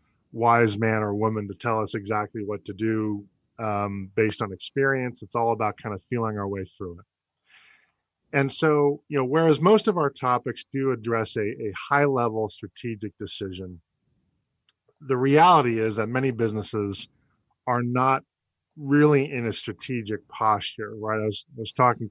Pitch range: 105-125 Hz